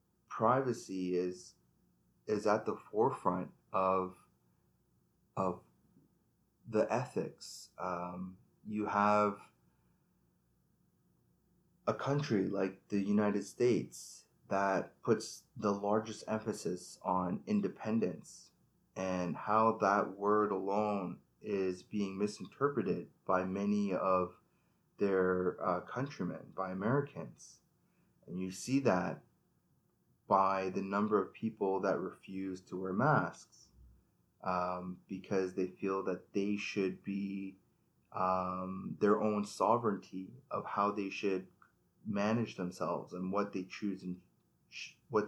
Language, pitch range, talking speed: English, 95-105 Hz, 105 wpm